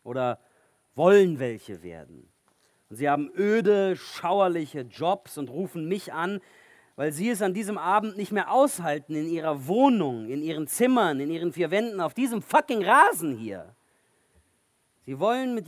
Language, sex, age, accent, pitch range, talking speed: German, male, 40-59, German, 165-255 Hz, 155 wpm